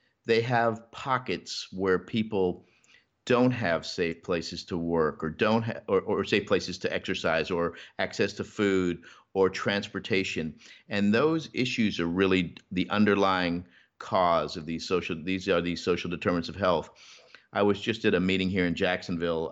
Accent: American